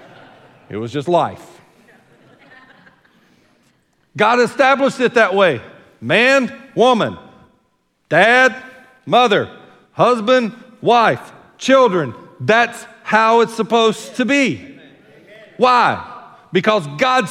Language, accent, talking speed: English, American, 85 wpm